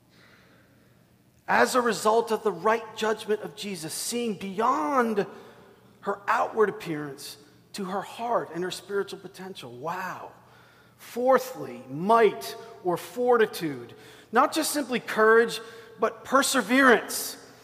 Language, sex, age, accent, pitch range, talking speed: English, male, 40-59, American, 190-240 Hz, 110 wpm